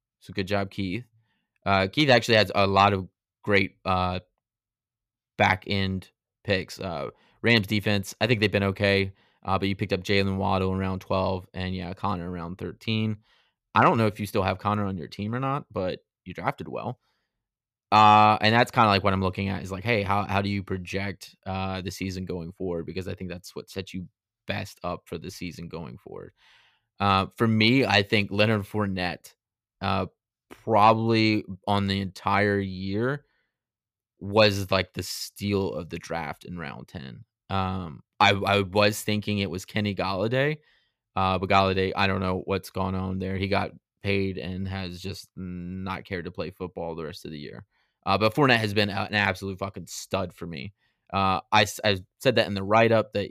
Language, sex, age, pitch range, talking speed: English, male, 20-39, 95-105 Hz, 190 wpm